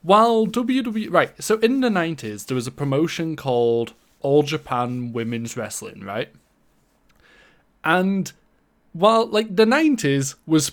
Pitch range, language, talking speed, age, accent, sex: 135-210 Hz, English, 130 wpm, 20-39, British, male